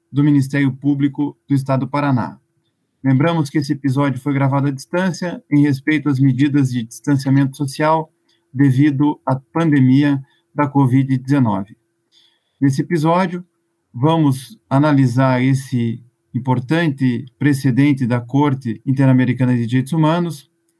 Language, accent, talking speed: Portuguese, Brazilian, 115 wpm